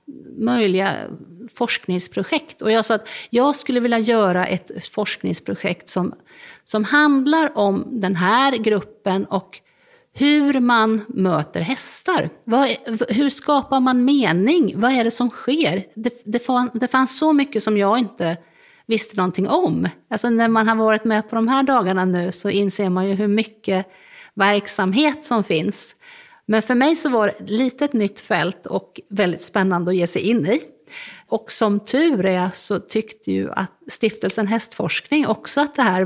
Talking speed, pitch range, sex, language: 165 wpm, 200-280 Hz, female, Swedish